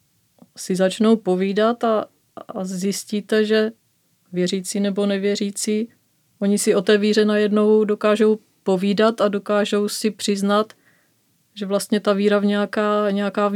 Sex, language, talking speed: female, Czech, 135 wpm